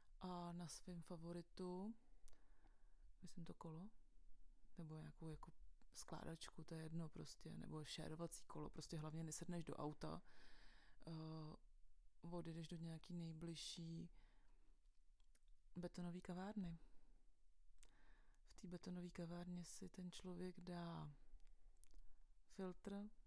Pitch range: 160-180 Hz